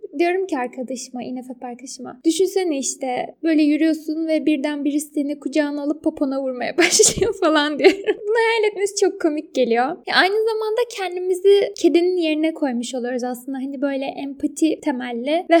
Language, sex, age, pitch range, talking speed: Turkish, female, 10-29, 265-340 Hz, 155 wpm